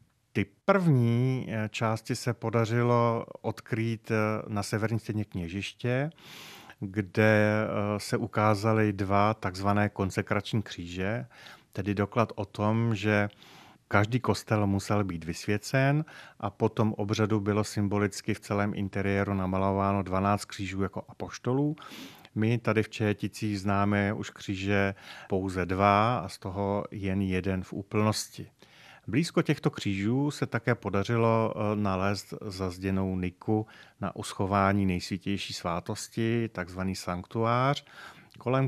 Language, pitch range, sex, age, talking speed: Czech, 100-115 Hz, male, 40-59, 110 wpm